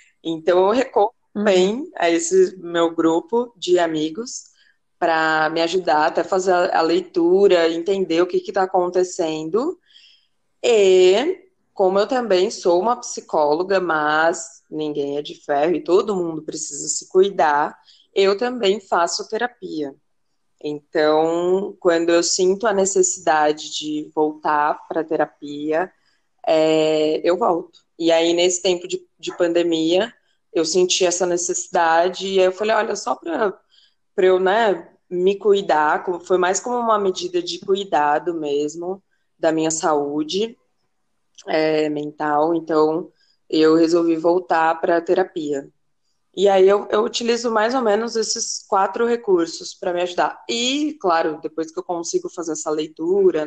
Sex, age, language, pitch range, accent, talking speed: female, 20-39, Portuguese, 160-205 Hz, Brazilian, 135 wpm